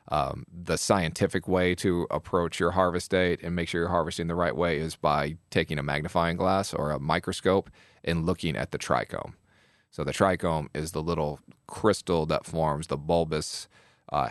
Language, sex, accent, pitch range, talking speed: English, male, American, 80-95 Hz, 180 wpm